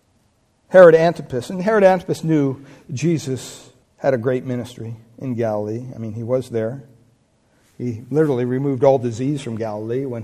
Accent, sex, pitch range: American, male, 120-160 Hz